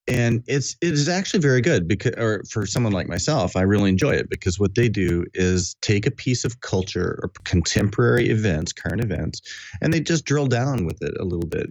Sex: male